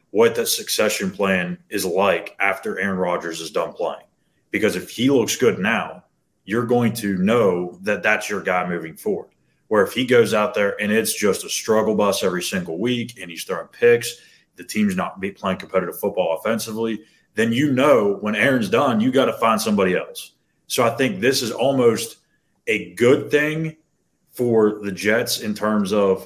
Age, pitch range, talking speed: 30-49, 100-155 Hz, 185 wpm